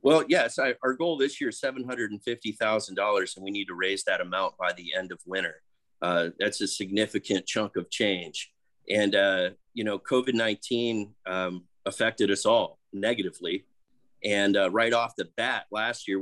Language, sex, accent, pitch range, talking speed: English, male, American, 95-120 Hz, 170 wpm